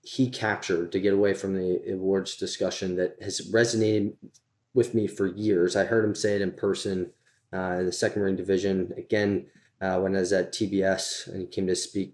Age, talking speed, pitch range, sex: 20-39, 200 wpm, 95-115 Hz, male